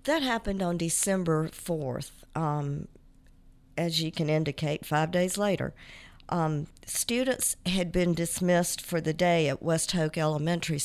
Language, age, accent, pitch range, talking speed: English, 50-69, American, 155-180 Hz, 140 wpm